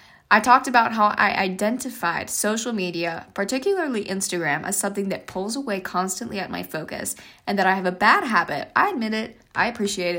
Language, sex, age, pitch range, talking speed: English, female, 10-29, 185-235 Hz, 185 wpm